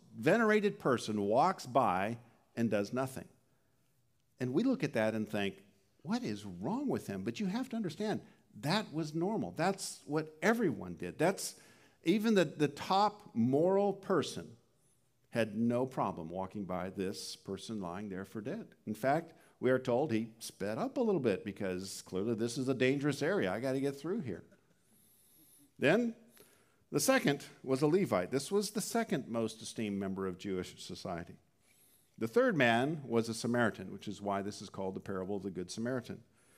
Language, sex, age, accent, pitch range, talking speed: English, male, 50-69, American, 105-155 Hz, 175 wpm